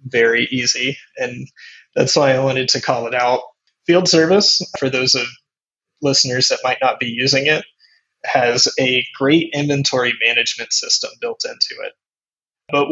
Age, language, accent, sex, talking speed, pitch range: 20-39, English, American, male, 155 wpm, 120-155 Hz